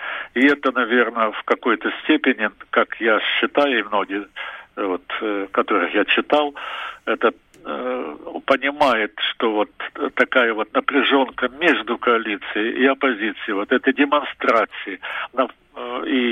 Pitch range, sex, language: 120-145 Hz, male, English